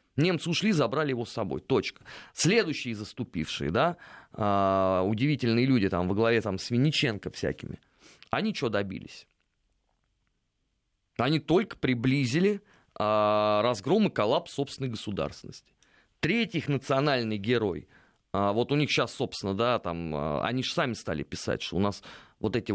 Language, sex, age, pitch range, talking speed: Russian, male, 30-49, 100-145 Hz, 130 wpm